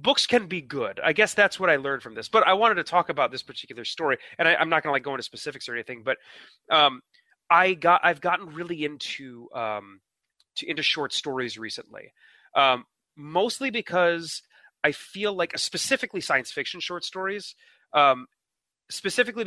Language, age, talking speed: English, 30-49, 180 wpm